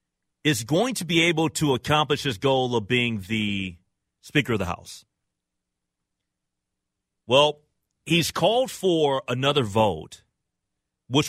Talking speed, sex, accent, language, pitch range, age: 120 wpm, male, American, English, 105-155 Hz, 40-59